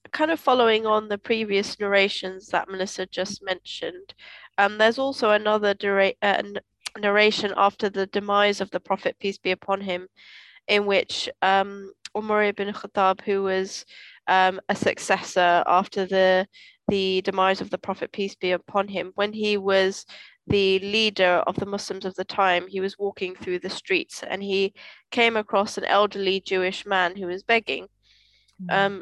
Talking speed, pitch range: 165 wpm, 190-215 Hz